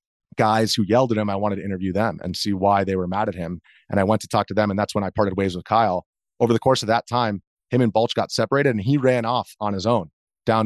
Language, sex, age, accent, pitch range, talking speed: English, male, 30-49, American, 95-110 Hz, 295 wpm